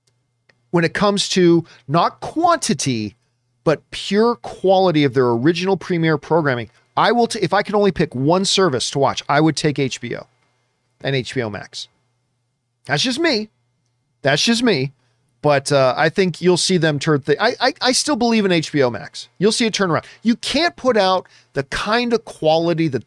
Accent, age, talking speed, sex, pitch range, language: American, 40-59, 180 wpm, male, 130-195 Hz, English